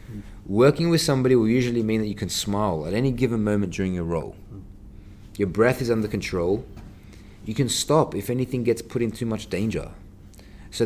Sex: male